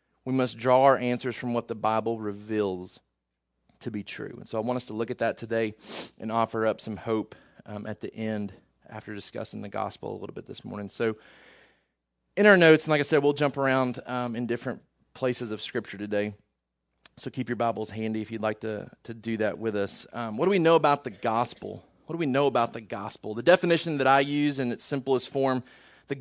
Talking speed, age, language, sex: 225 wpm, 30-49, English, male